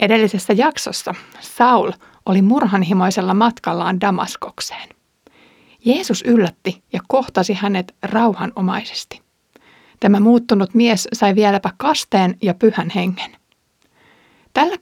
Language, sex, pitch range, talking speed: Finnish, female, 190-235 Hz, 95 wpm